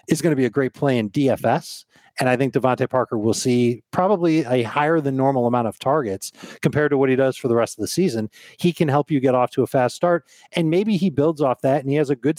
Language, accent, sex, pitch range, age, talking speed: English, American, male, 120-150 Hz, 40-59, 270 wpm